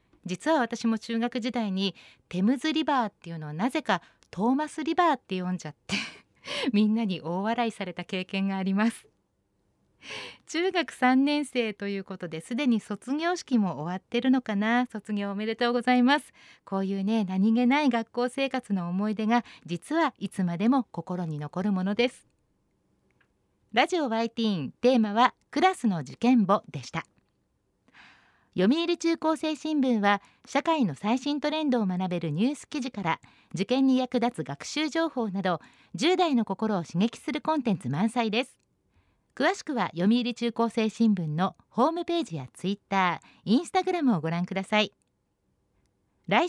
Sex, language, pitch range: female, Japanese, 195-270 Hz